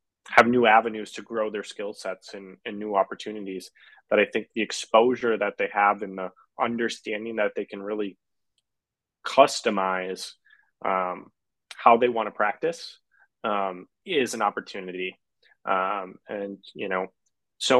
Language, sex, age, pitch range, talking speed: English, male, 20-39, 95-110 Hz, 145 wpm